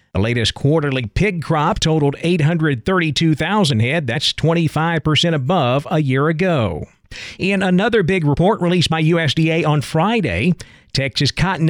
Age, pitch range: 50-69, 140-170 Hz